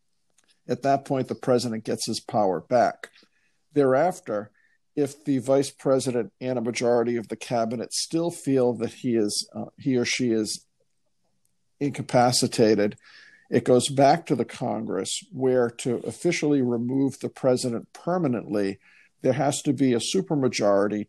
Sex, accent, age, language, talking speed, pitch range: male, American, 50-69, English, 140 wpm, 120-145 Hz